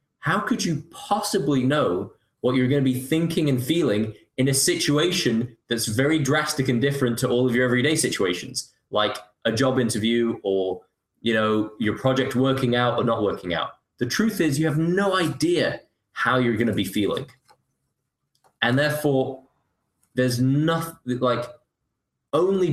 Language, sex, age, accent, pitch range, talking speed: English, male, 20-39, British, 115-140 Hz, 160 wpm